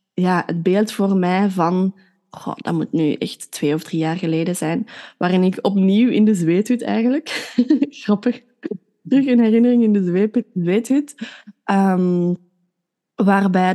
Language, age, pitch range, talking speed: Dutch, 20-39, 175-215 Hz, 145 wpm